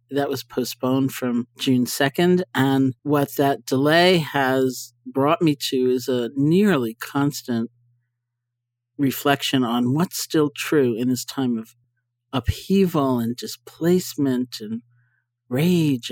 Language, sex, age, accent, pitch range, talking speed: English, male, 50-69, American, 120-140 Hz, 120 wpm